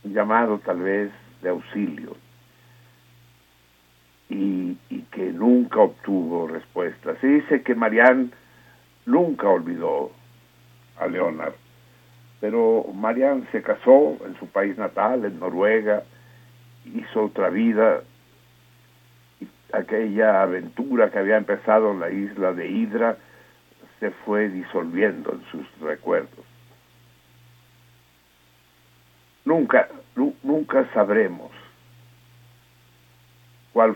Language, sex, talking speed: Spanish, male, 95 wpm